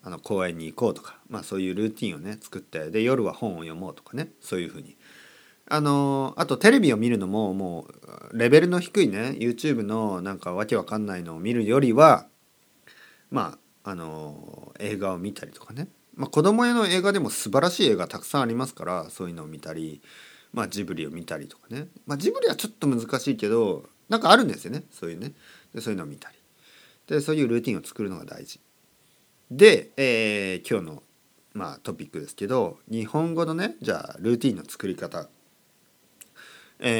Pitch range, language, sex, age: 95-150 Hz, Japanese, male, 40-59